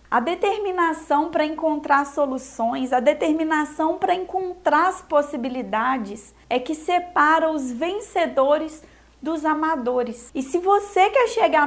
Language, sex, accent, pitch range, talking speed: Portuguese, female, Brazilian, 265-335 Hz, 120 wpm